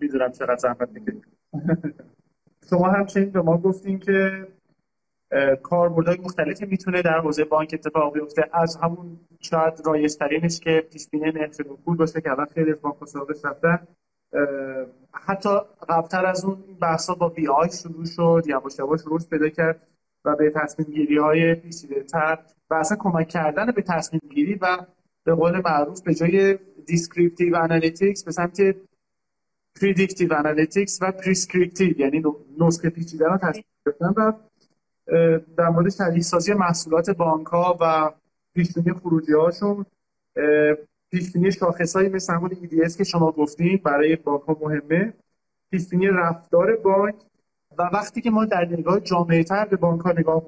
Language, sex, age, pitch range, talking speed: Persian, male, 30-49, 155-190 Hz, 140 wpm